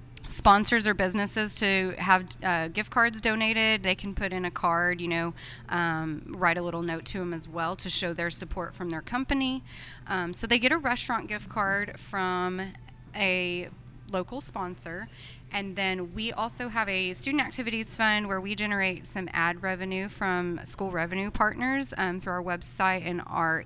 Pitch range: 175-220 Hz